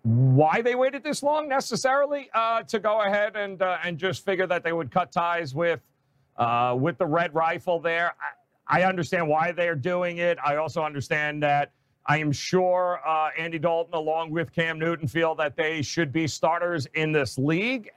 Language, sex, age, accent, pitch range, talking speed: English, male, 40-59, American, 150-200 Hz, 190 wpm